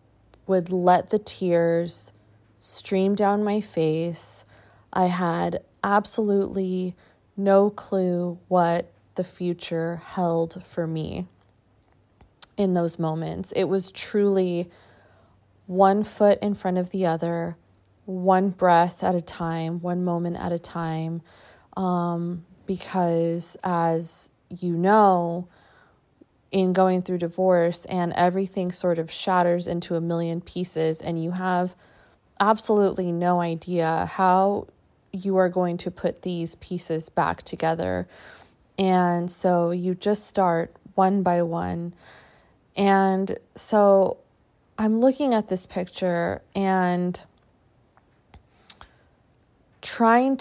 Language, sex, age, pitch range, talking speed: English, female, 20-39, 165-190 Hz, 110 wpm